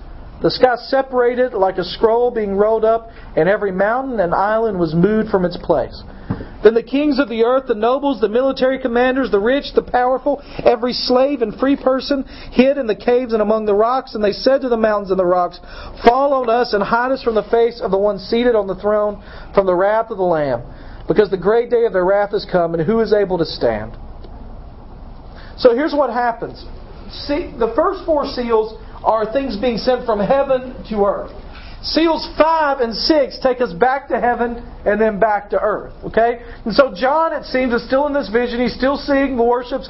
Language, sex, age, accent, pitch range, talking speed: English, male, 40-59, American, 210-265 Hz, 210 wpm